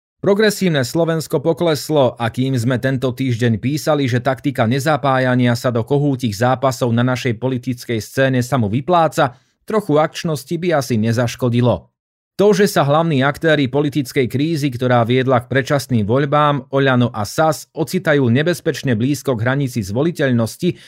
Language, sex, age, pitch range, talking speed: Slovak, male, 30-49, 120-150 Hz, 140 wpm